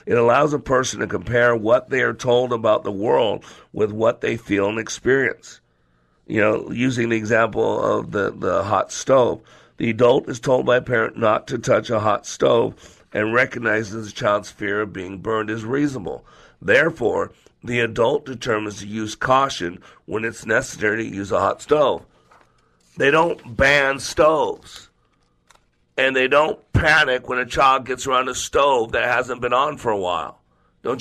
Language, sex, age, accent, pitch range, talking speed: English, male, 50-69, American, 110-130 Hz, 175 wpm